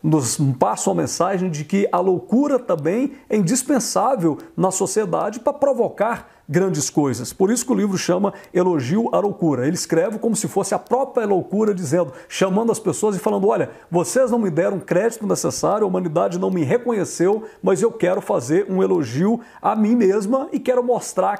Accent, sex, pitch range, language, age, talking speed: Brazilian, male, 165-215 Hz, English, 50-69, 180 wpm